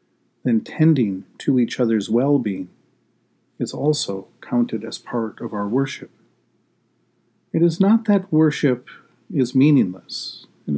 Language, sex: English, male